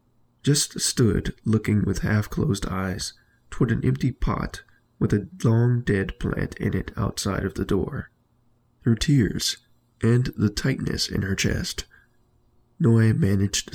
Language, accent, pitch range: English, American, 100-120 Hz